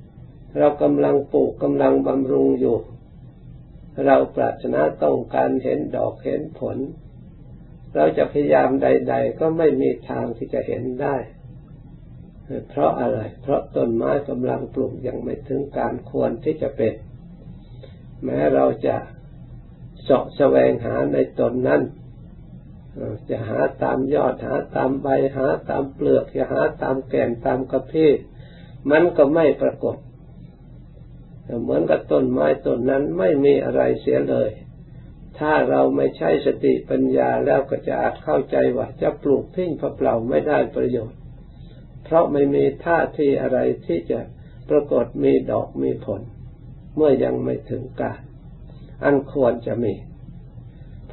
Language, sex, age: Thai, male, 60-79